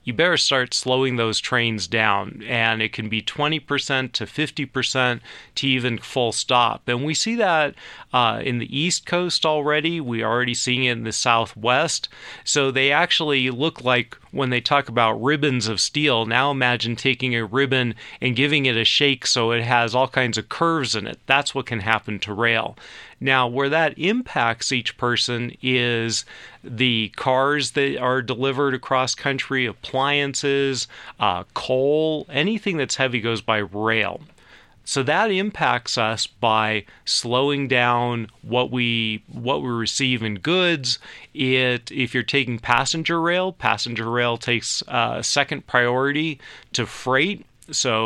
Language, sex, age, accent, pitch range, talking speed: English, male, 40-59, American, 115-140 Hz, 155 wpm